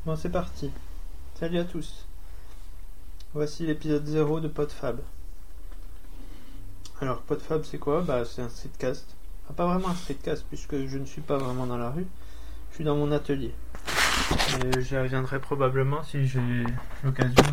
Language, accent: French, French